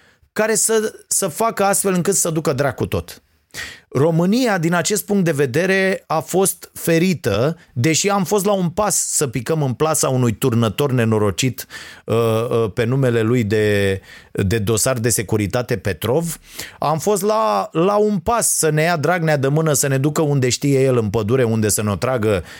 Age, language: 30-49, Romanian